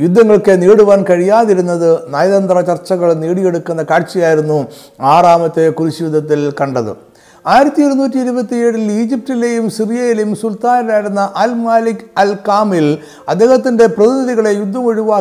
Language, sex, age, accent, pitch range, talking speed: Malayalam, male, 50-69, native, 170-225 Hz, 95 wpm